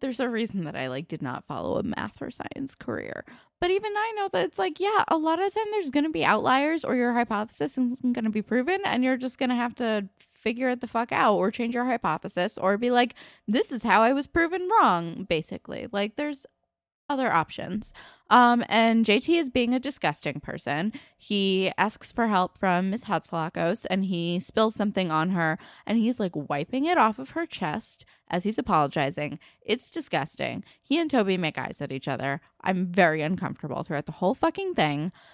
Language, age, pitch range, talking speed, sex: English, 10-29, 170-255 Hz, 205 wpm, female